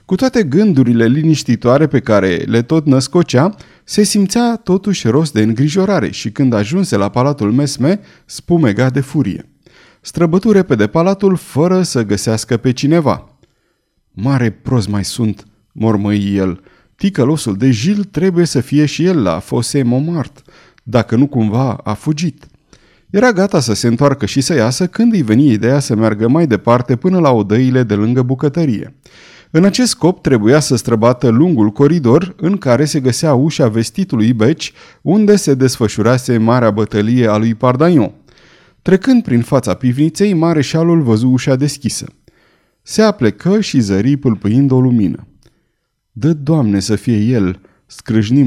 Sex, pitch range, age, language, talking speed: male, 110-160 Hz, 30-49, Romanian, 150 wpm